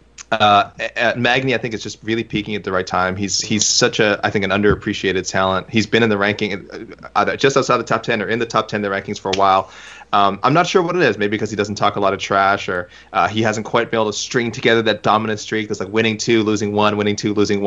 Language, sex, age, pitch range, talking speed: English, male, 20-39, 100-115 Hz, 280 wpm